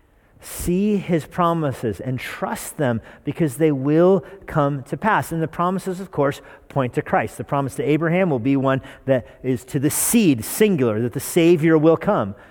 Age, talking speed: 40-59, 180 wpm